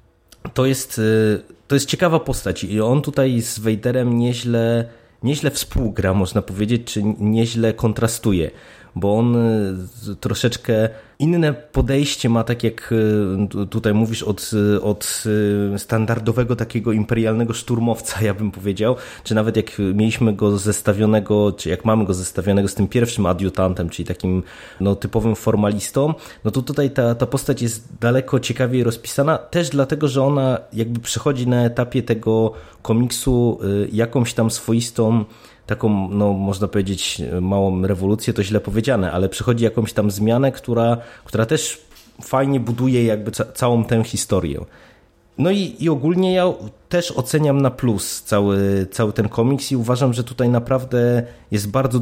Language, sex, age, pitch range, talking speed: Polish, male, 20-39, 105-125 Hz, 140 wpm